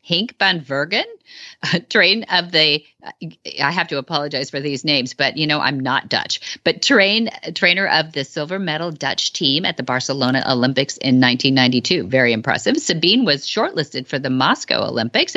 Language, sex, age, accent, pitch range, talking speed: English, female, 40-59, American, 135-190 Hz, 165 wpm